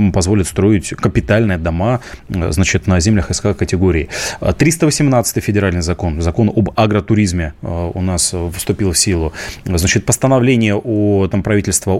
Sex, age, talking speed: male, 20-39, 110 wpm